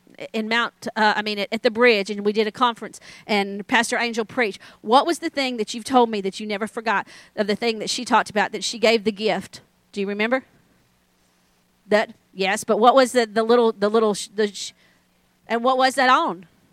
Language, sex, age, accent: English, female, 40-59, American